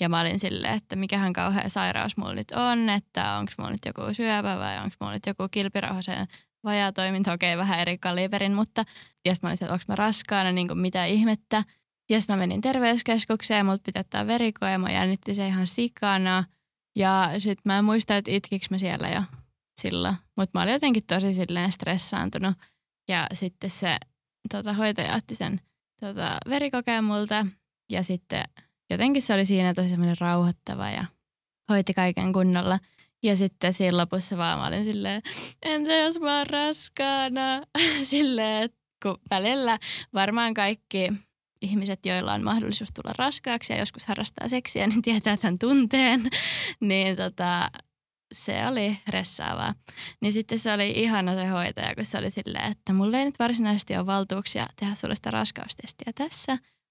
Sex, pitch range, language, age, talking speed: female, 185-220 Hz, Finnish, 20-39, 160 wpm